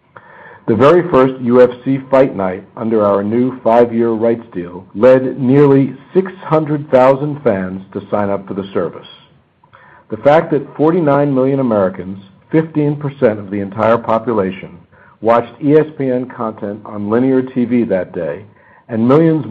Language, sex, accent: English, male, American